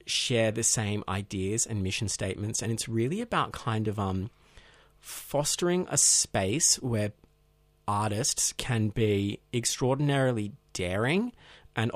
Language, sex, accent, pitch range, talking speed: English, male, Australian, 100-130 Hz, 120 wpm